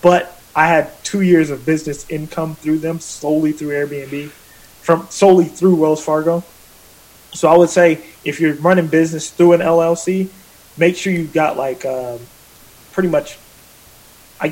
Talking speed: 155 wpm